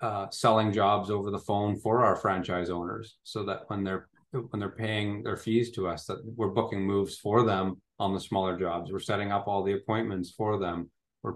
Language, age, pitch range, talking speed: English, 30-49, 95-105 Hz, 210 wpm